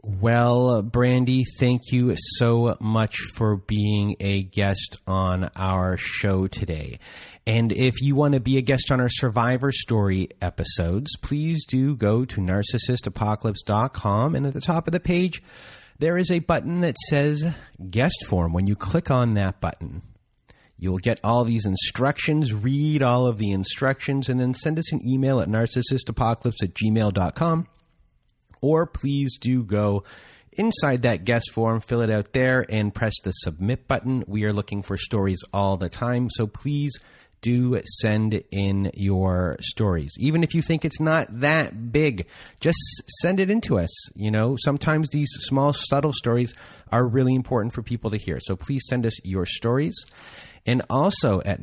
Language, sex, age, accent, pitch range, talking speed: English, male, 30-49, American, 100-135 Hz, 165 wpm